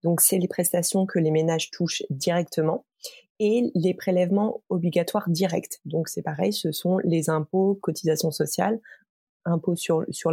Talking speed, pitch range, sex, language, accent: 150 wpm, 170-220 Hz, female, French, French